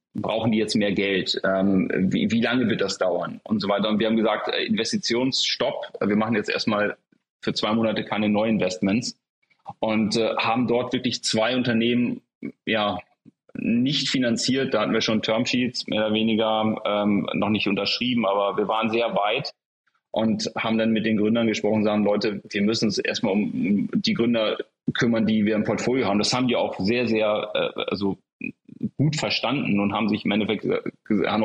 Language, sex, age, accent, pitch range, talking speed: German, male, 30-49, German, 105-120 Hz, 180 wpm